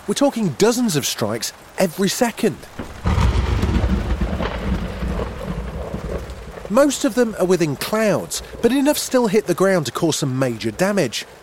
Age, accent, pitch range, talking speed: 30-49, British, 140-210 Hz, 125 wpm